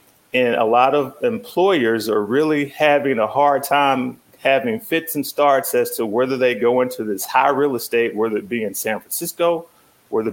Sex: male